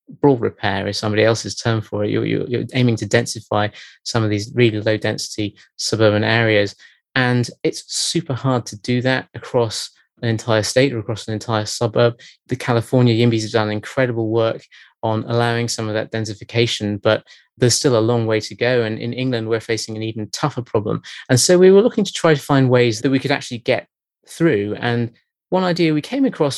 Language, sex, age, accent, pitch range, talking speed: English, male, 20-39, British, 110-125 Hz, 200 wpm